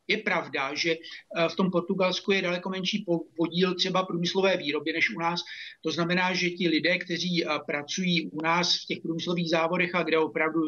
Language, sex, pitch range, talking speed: Czech, male, 160-180 Hz, 180 wpm